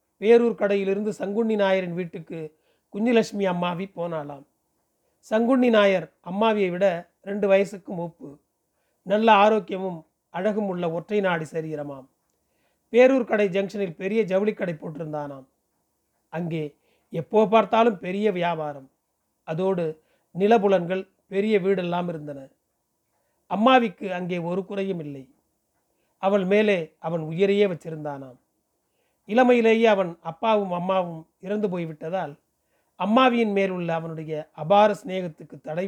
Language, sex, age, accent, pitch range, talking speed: Tamil, male, 30-49, native, 165-210 Hz, 105 wpm